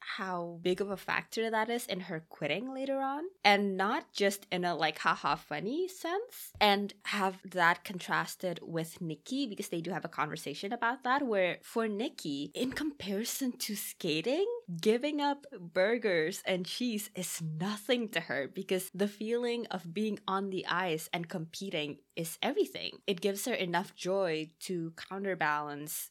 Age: 20-39